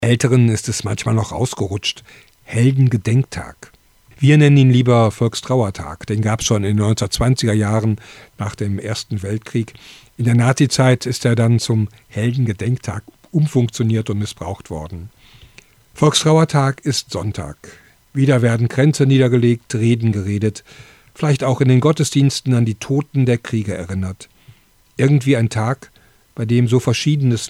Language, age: German, 50-69